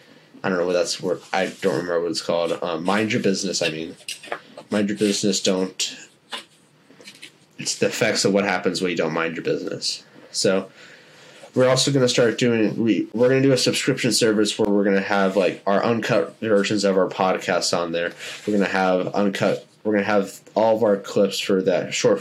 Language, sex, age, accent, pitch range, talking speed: English, male, 20-39, American, 95-110 Hz, 215 wpm